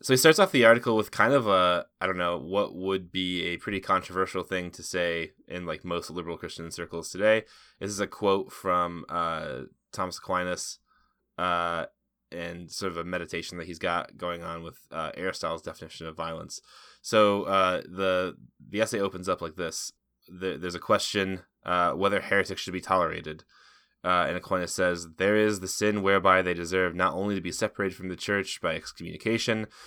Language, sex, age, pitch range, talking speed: English, male, 10-29, 90-105 Hz, 190 wpm